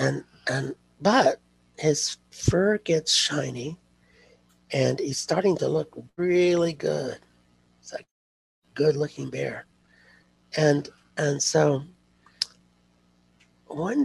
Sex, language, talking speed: male, English, 100 wpm